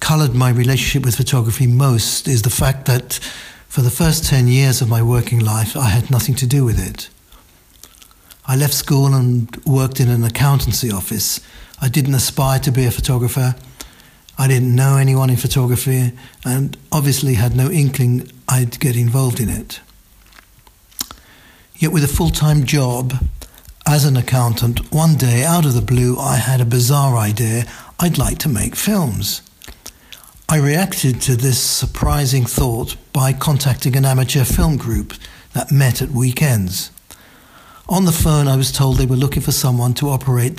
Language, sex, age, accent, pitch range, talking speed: English, male, 60-79, British, 120-140 Hz, 165 wpm